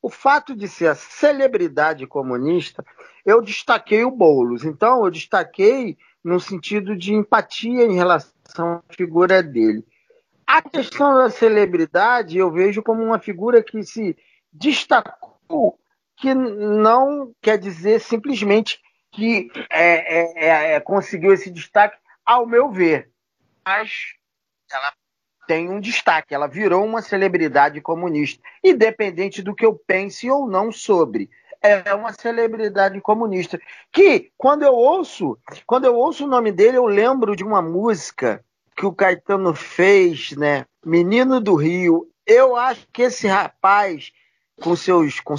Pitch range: 175-260 Hz